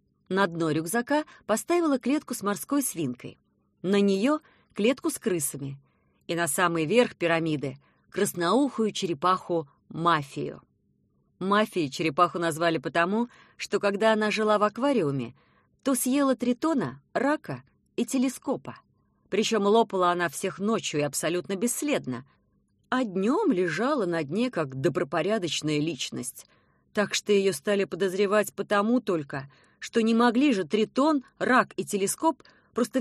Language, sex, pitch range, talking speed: Russian, female, 170-245 Hz, 125 wpm